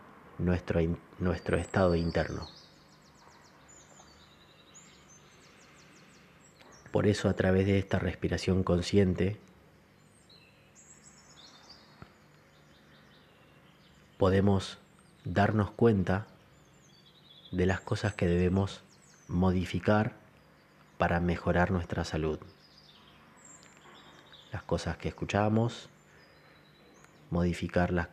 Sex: male